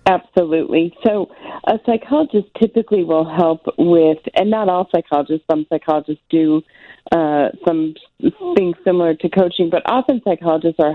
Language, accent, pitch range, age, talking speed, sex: English, American, 155-185 Hz, 40-59, 135 wpm, female